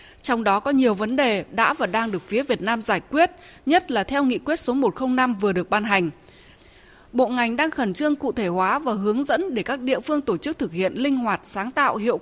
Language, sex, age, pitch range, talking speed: Vietnamese, female, 20-39, 210-290 Hz, 245 wpm